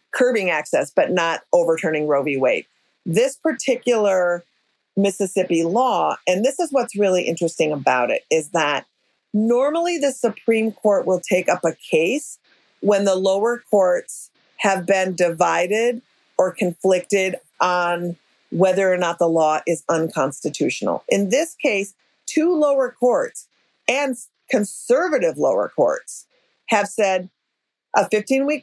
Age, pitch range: 40-59, 180-265 Hz